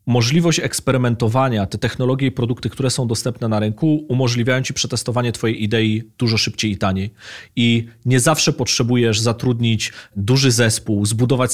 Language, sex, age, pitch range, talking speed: Polish, male, 30-49, 115-130 Hz, 145 wpm